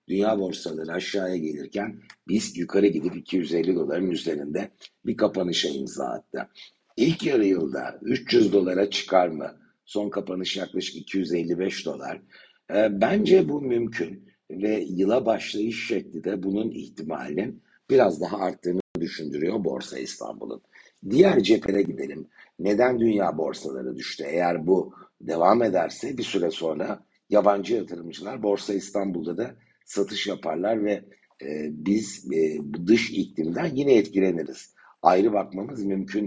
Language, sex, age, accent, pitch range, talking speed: Turkish, male, 60-79, native, 85-105 Hz, 125 wpm